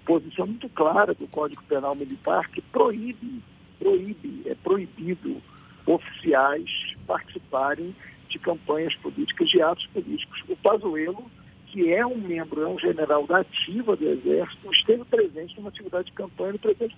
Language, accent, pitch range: Portuguese, Brazilian, 180-305 Hz